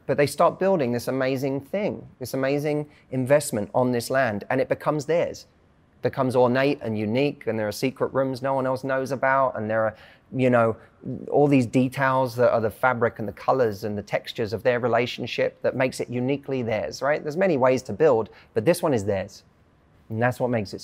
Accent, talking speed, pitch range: British, 210 wpm, 110-135 Hz